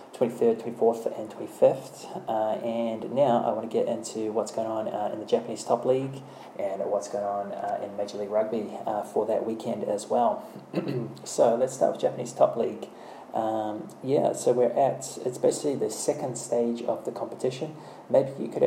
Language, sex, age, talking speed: English, male, 20-39, 190 wpm